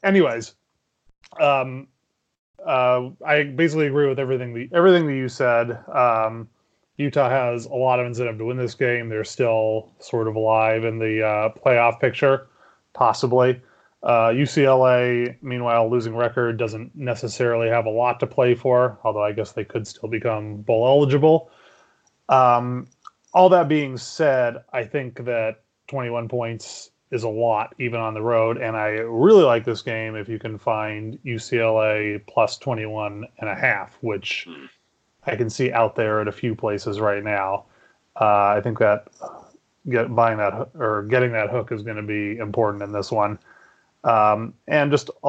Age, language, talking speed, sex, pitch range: 30-49, English, 165 wpm, male, 110-125 Hz